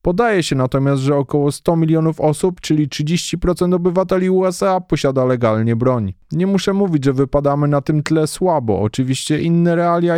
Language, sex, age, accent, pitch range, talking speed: Polish, male, 20-39, native, 135-170 Hz, 160 wpm